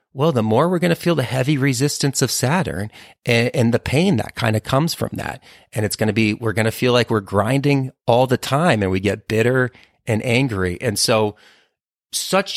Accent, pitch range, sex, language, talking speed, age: American, 105-130 Hz, male, English, 220 wpm, 30-49